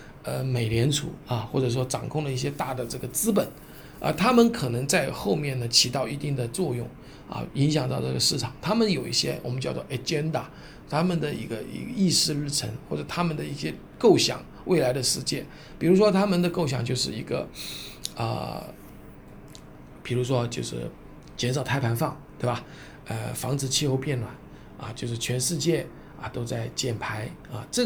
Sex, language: male, Chinese